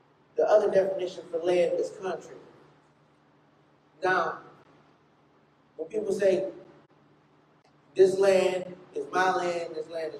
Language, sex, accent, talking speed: English, male, American, 110 wpm